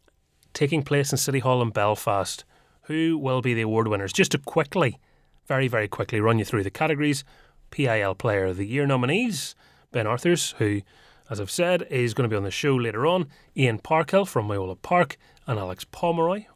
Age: 30-49